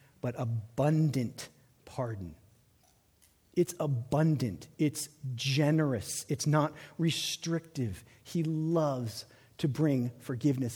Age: 40-59